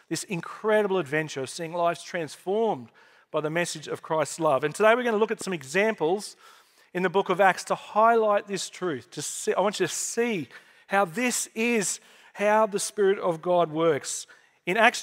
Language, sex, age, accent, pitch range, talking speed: English, male, 40-59, Australian, 165-215 Hz, 190 wpm